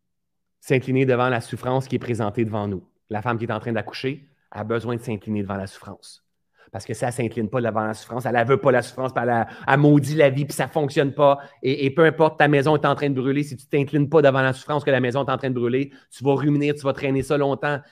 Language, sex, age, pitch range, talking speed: French, male, 30-49, 125-150 Hz, 285 wpm